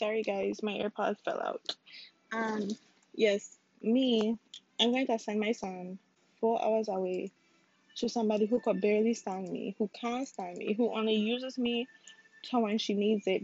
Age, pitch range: 20-39, 205-240 Hz